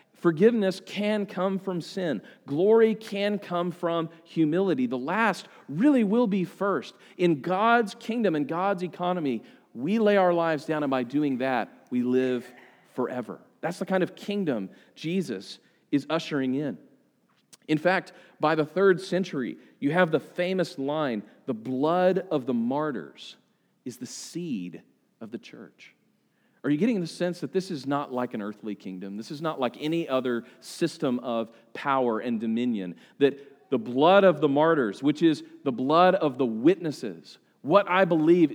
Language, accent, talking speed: English, American, 165 wpm